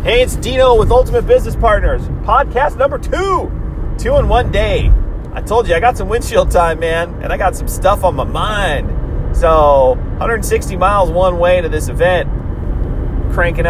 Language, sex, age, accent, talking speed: English, male, 30-49, American, 175 wpm